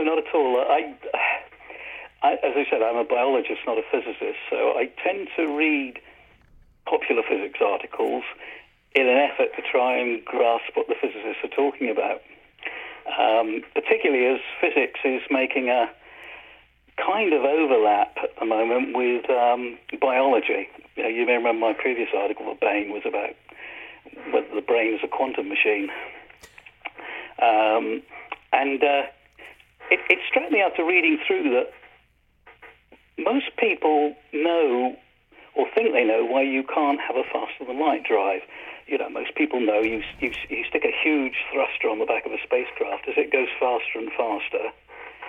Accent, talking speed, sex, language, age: British, 160 wpm, male, English, 50-69